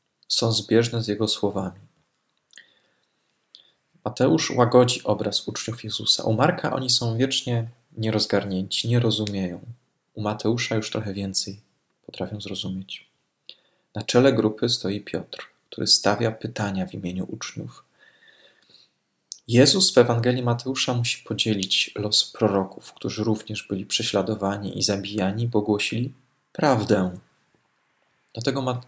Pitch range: 100-125 Hz